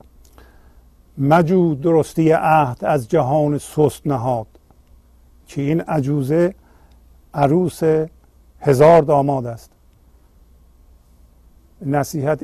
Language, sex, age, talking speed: Persian, male, 50-69, 70 wpm